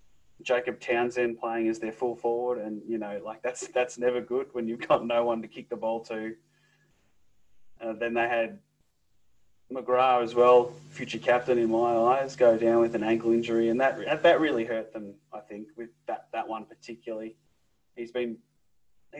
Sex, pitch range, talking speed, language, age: male, 110-130 Hz, 180 wpm, English, 20-39